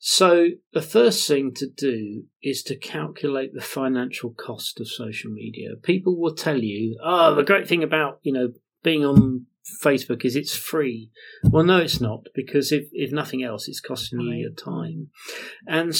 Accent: British